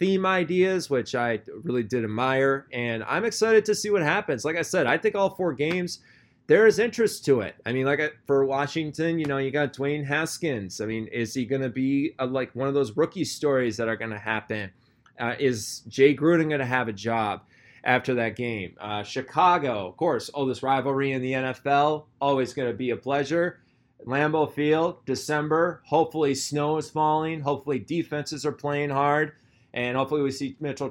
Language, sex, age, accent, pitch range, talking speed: English, male, 20-39, American, 125-155 Hz, 200 wpm